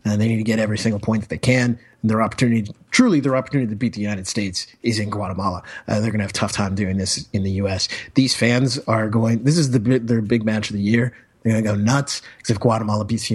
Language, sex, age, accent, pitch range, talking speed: English, male, 30-49, American, 105-130 Hz, 280 wpm